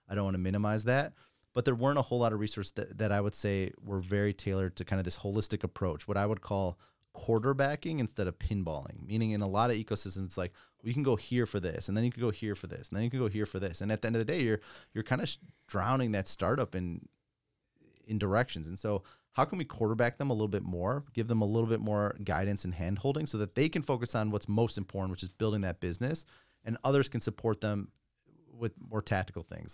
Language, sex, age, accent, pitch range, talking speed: English, male, 30-49, American, 95-115 Hz, 255 wpm